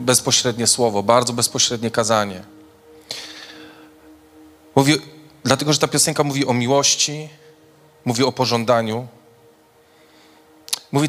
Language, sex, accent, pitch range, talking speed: Polish, male, native, 115-150 Hz, 90 wpm